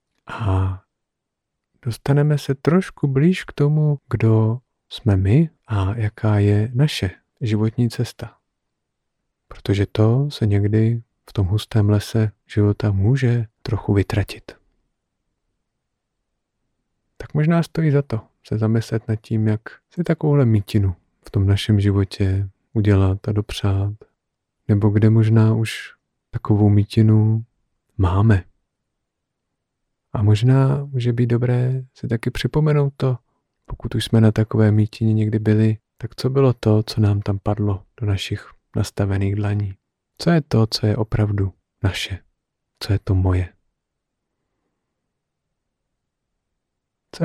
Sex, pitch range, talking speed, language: male, 100-120 Hz, 120 wpm, Czech